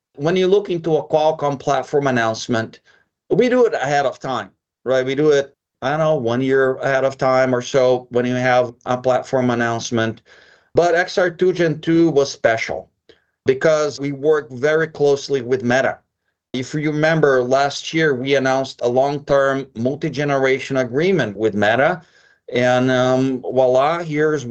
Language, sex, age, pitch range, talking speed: English, male, 40-59, 125-150 Hz, 155 wpm